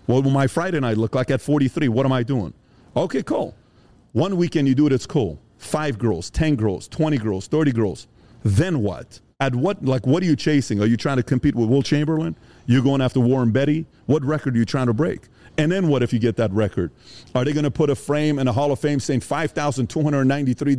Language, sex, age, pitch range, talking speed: English, male, 40-59, 110-145 Hz, 235 wpm